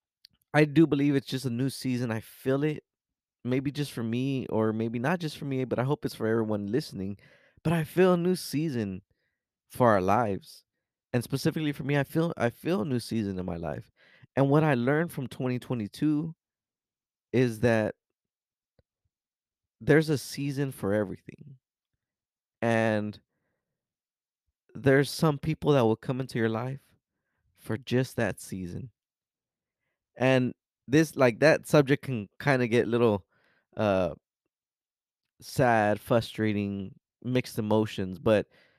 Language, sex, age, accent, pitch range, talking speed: English, male, 20-39, American, 110-145 Hz, 145 wpm